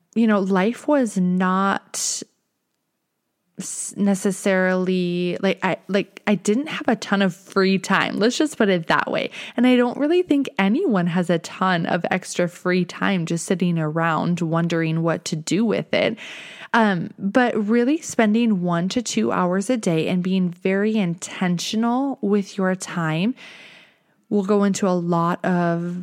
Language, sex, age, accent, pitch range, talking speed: English, female, 20-39, American, 170-210 Hz, 155 wpm